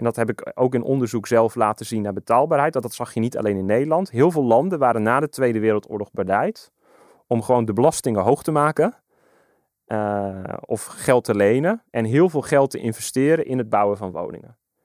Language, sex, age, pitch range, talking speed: Dutch, male, 30-49, 115-145 Hz, 210 wpm